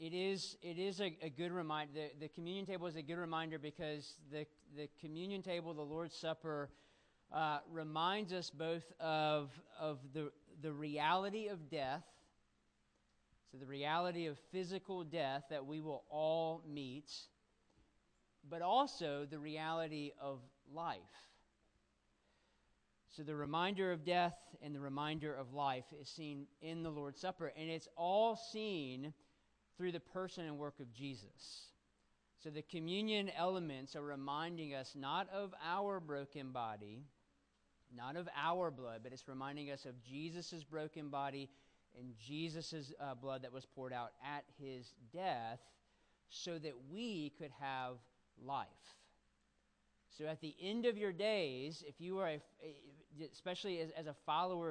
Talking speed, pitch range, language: 150 wpm, 140-170 Hz, English